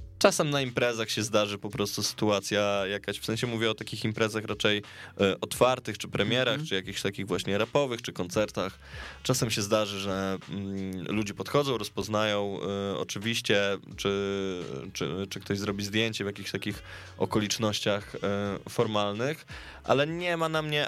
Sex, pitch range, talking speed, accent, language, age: male, 100-125 Hz, 145 wpm, native, Polish, 20-39